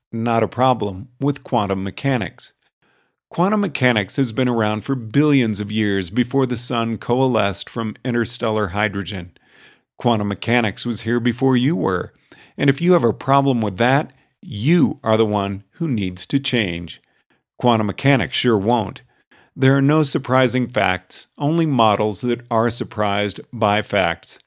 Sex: male